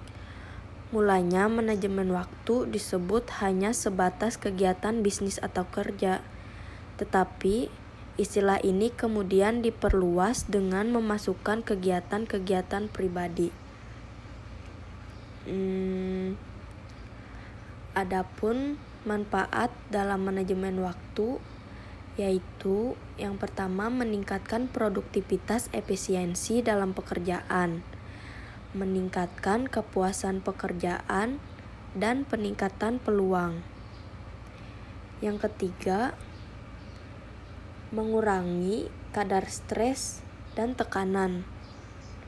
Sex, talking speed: female, 65 wpm